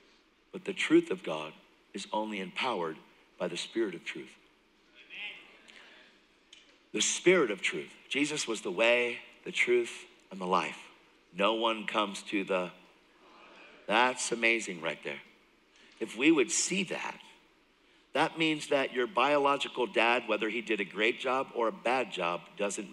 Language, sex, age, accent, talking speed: English, male, 50-69, American, 150 wpm